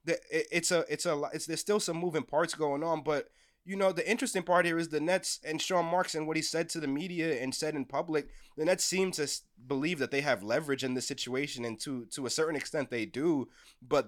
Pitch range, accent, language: 145-185 Hz, American, English